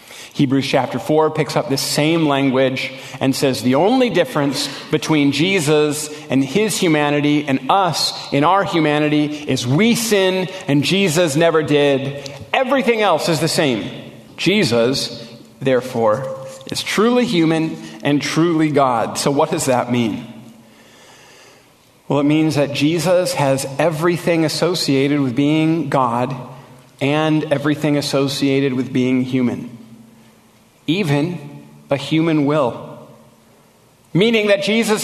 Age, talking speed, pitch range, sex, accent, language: 40-59, 125 wpm, 135-170 Hz, male, American, English